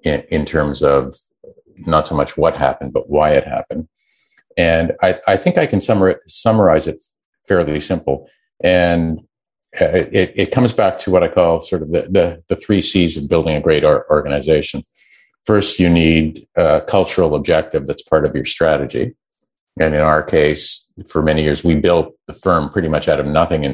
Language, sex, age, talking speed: English, male, 50-69, 180 wpm